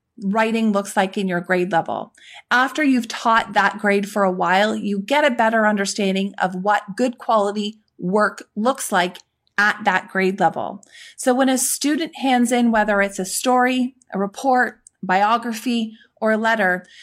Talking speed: 165 wpm